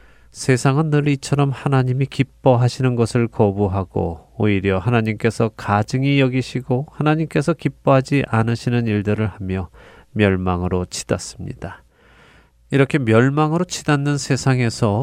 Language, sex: Korean, male